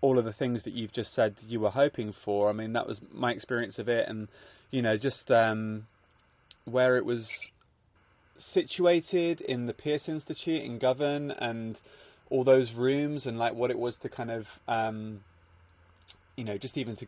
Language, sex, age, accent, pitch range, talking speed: English, male, 20-39, British, 115-140 Hz, 185 wpm